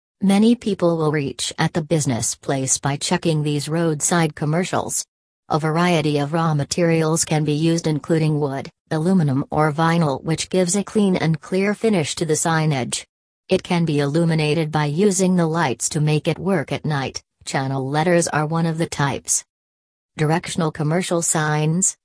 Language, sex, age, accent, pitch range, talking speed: English, female, 40-59, American, 150-175 Hz, 165 wpm